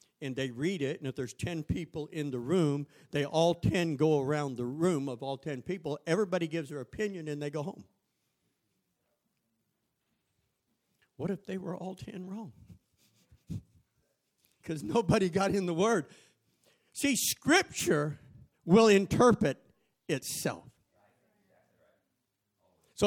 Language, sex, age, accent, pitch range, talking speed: English, male, 50-69, American, 170-280 Hz, 130 wpm